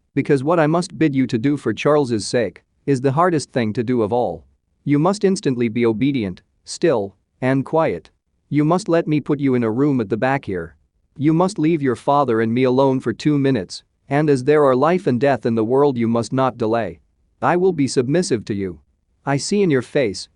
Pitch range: 110-150 Hz